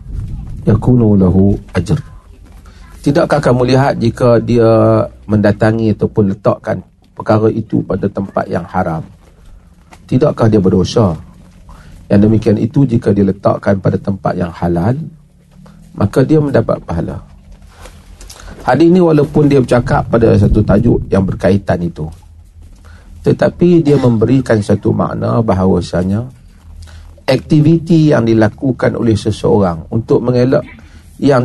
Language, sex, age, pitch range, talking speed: Malay, male, 40-59, 90-130 Hz, 115 wpm